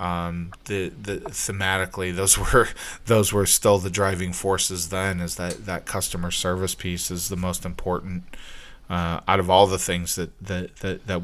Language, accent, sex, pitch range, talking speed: English, American, male, 90-100 Hz, 175 wpm